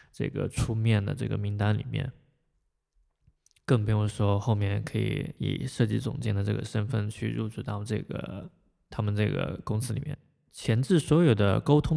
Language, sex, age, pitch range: Chinese, male, 20-39, 110-135 Hz